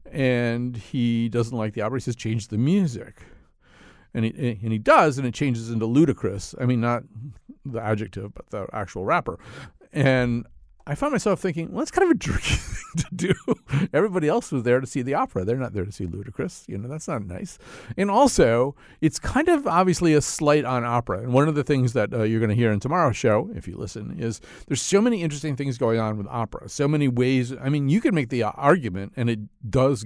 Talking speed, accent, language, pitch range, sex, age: 225 wpm, American, English, 110-140 Hz, male, 50-69